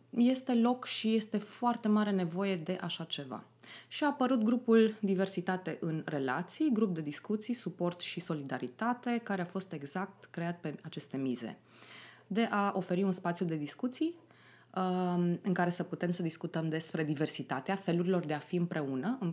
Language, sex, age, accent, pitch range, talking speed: Romanian, female, 20-39, native, 165-215 Hz, 160 wpm